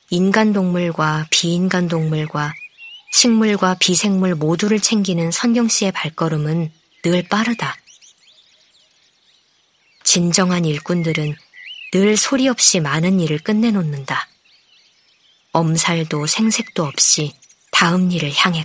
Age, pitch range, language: 20-39, 160-200 Hz, Korean